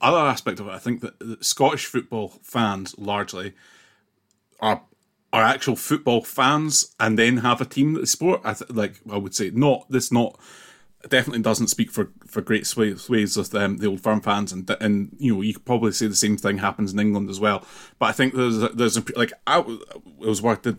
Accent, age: British, 30-49